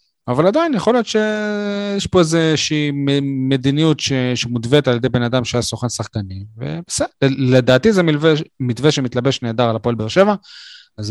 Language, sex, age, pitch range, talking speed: Hebrew, male, 30-49, 120-140 Hz, 150 wpm